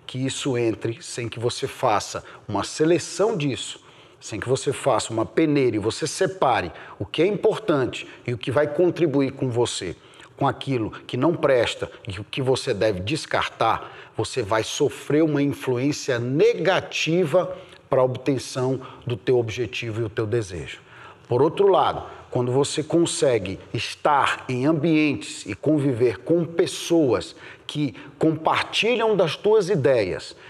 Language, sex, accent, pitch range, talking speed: Portuguese, male, Brazilian, 120-185 Hz, 150 wpm